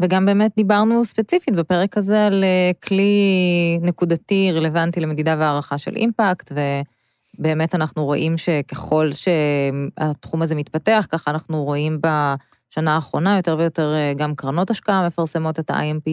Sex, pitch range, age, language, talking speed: female, 145-170 Hz, 20-39, Hebrew, 125 wpm